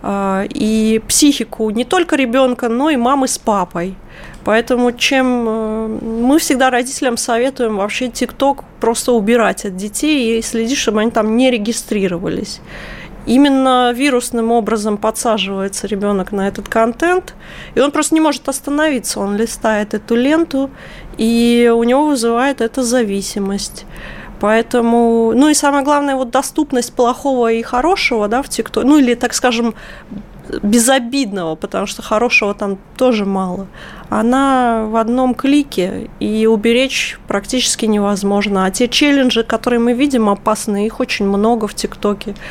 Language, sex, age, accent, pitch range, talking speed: Russian, female, 30-49, native, 215-260 Hz, 135 wpm